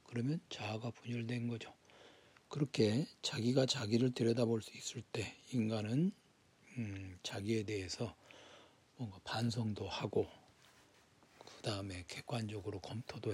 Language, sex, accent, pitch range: English, male, Korean, 105-130 Hz